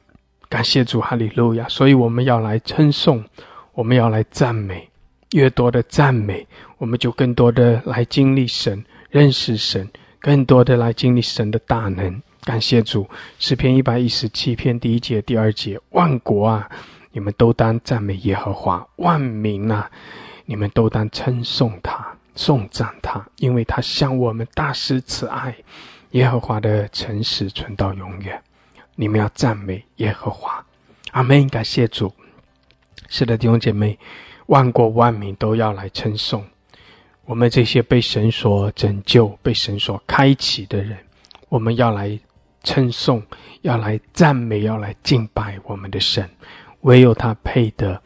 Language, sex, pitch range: English, male, 105-125 Hz